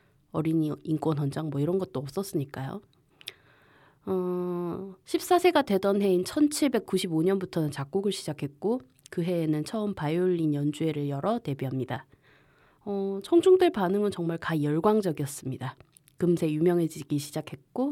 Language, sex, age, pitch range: Korean, female, 20-39, 145-195 Hz